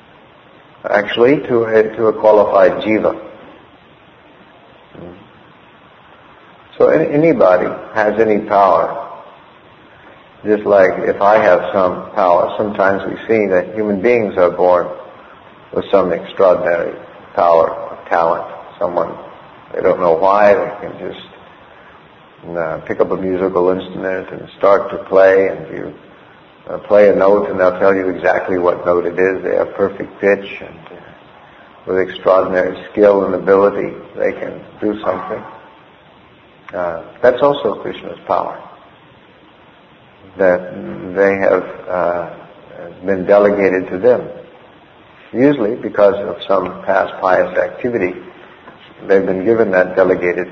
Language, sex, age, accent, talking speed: English, male, 50-69, American, 120 wpm